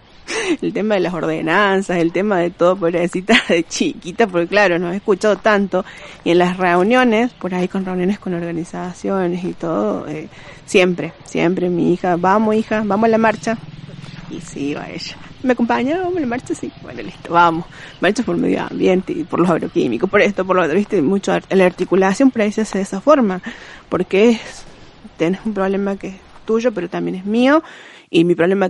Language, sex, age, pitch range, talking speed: Spanish, female, 20-39, 175-220 Hz, 200 wpm